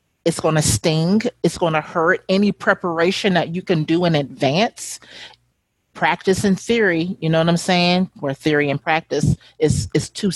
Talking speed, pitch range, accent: 180 wpm, 155-200 Hz, American